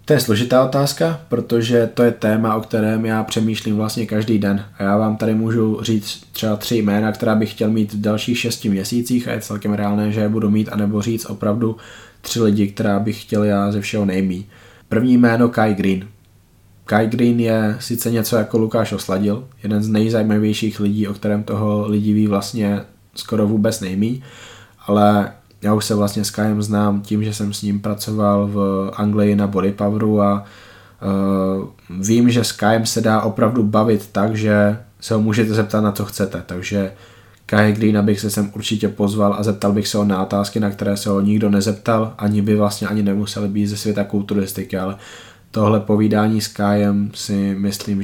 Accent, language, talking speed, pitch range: native, Czech, 185 wpm, 100-110 Hz